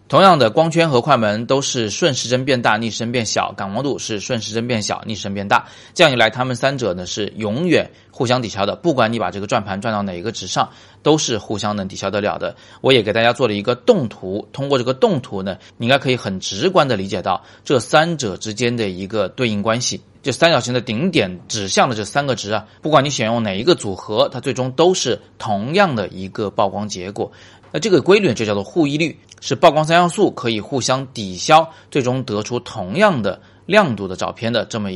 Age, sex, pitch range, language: 30-49, male, 105-140 Hz, Chinese